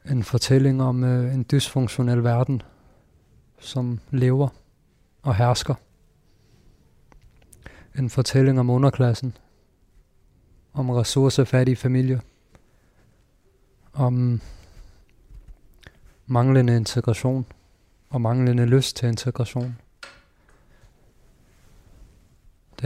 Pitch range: 100-130 Hz